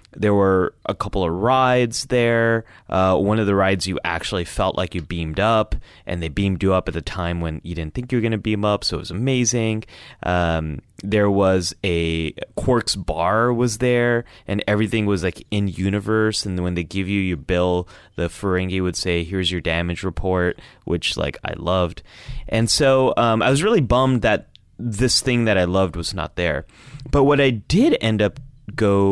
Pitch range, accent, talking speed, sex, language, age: 90-115 Hz, American, 200 wpm, male, English, 30-49